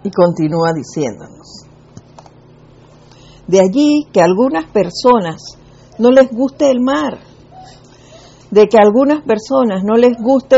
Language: Spanish